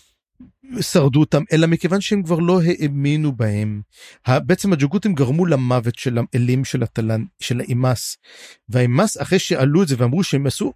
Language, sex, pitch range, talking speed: Hebrew, male, 130-190 Hz, 145 wpm